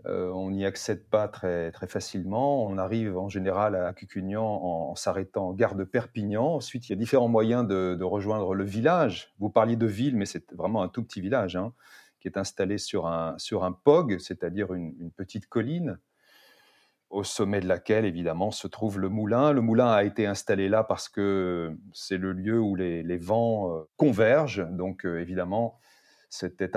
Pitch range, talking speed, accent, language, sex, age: 95-120 Hz, 190 wpm, French, French, male, 30-49